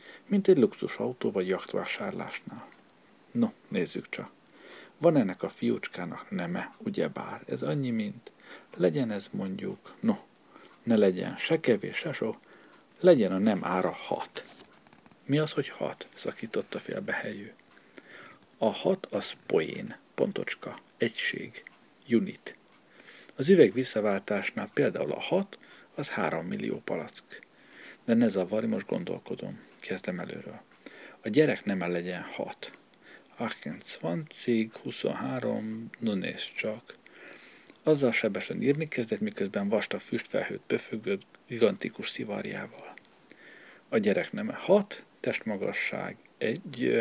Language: Hungarian